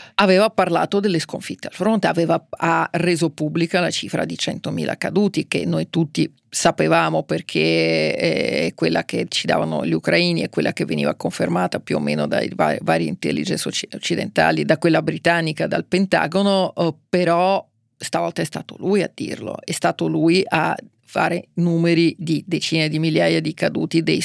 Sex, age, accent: female, 40-59, native